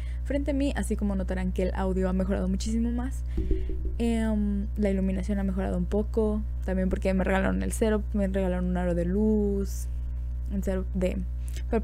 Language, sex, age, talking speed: Spanish, female, 20-39, 175 wpm